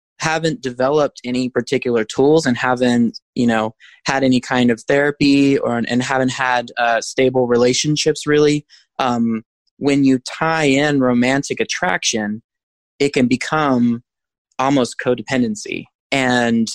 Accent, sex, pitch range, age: American, male, 120-150 Hz, 20-39